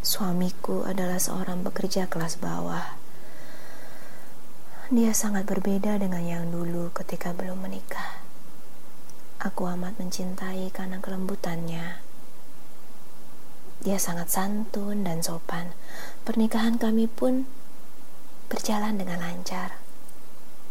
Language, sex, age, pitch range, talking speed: Indonesian, female, 20-39, 190-225 Hz, 90 wpm